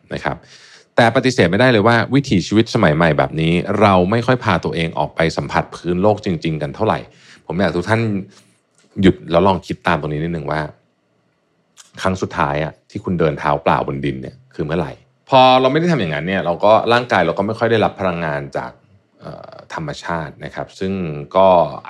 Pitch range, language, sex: 80-115 Hz, Thai, male